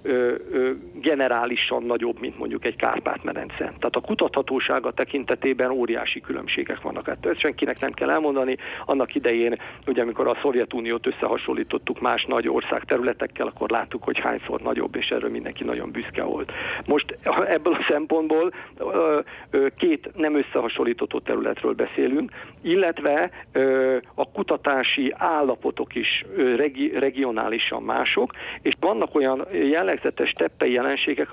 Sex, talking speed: male, 120 wpm